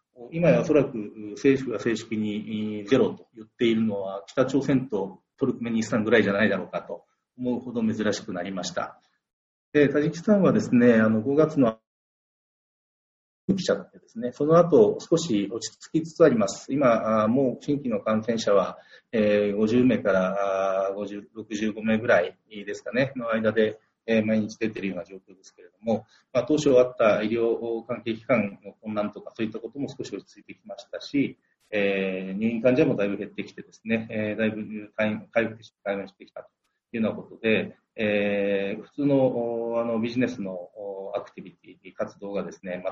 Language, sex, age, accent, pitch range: Japanese, male, 40-59, native, 105-125 Hz